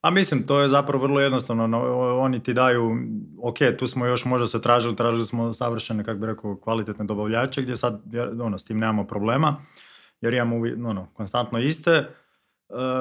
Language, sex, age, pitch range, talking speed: Croatian, male, 20-39, 110-135 Hz, 175 wpm